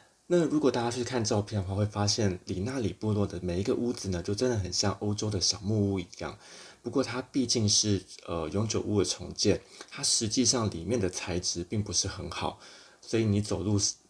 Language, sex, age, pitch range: Chinese, male, 20-39, 90-110 Hz